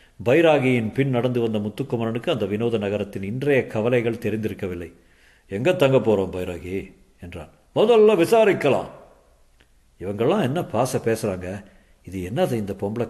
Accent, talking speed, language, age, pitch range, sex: native, 120 wpm, Tamil, 50-69, 105-150 Hz, male